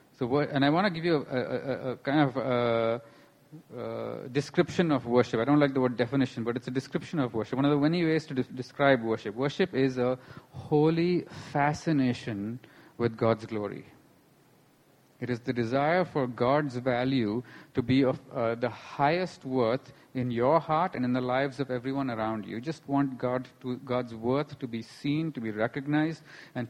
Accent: Indian